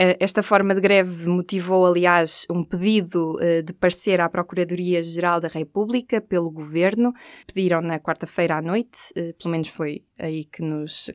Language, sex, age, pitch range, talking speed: Portuguese, female, 20-39, 175-200 Hz, 145 wpm